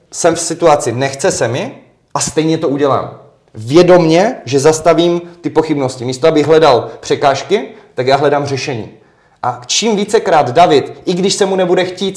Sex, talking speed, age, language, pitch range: male, 165 wpm, 30-49, Czech, 135-170 Hz